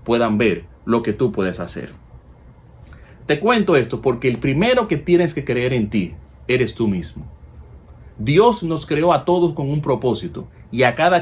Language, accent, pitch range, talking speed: Spanish, Venezuelan, 105-140 Hz, 175 wpm